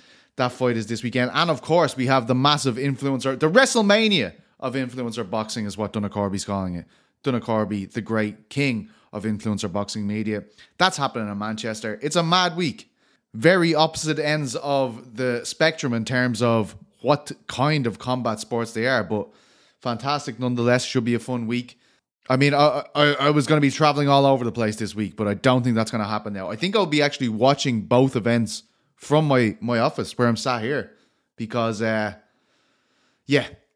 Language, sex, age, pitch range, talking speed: English, male, 20-39, 115-150 Hz, 190 wpm